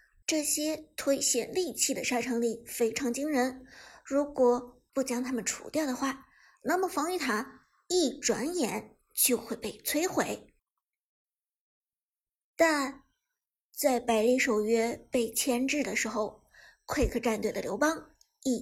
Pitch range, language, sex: 240-310 Hz, Chinese, male